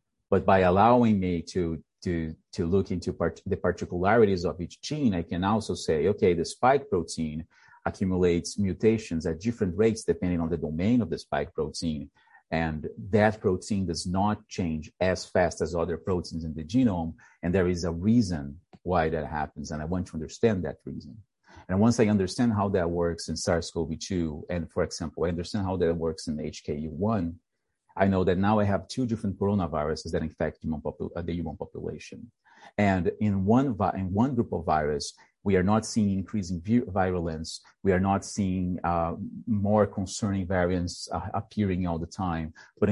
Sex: male